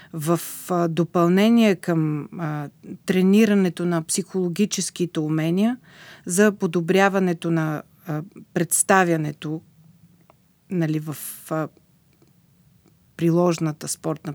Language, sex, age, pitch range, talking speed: Bulgarian, female, 40-59, 165-195 Hz, 75 wpm